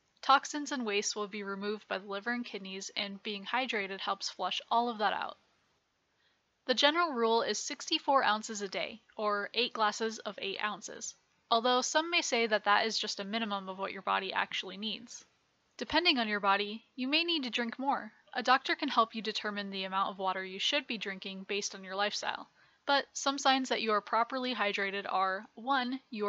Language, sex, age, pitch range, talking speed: English, female, 10-29, 200-250 Hz, 205 wpm